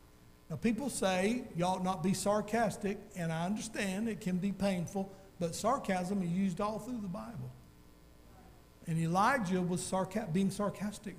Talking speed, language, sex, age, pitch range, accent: 145 wpm, English, male, 50-69, 165-230 Hz, American